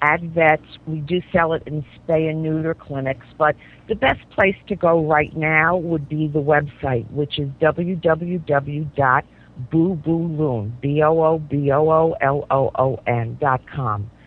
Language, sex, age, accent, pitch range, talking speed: English, female, 50-69, American, 140-170 Hz, 110 wpm